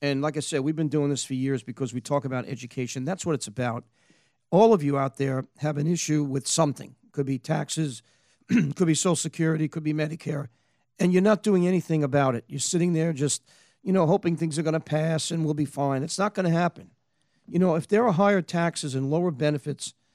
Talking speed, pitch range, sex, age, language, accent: 230 wpm, 145-185 Hz, male, 40-59, English, American